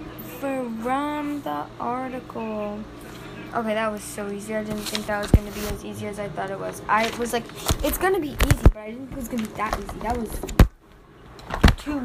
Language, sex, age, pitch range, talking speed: English, female, 10-29, 205-255 Hz, 225 wpm